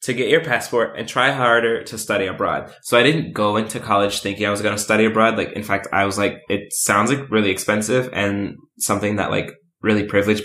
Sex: male